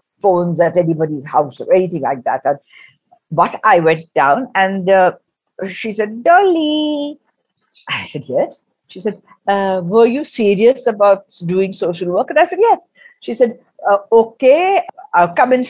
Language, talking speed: Hindi, 160 wpm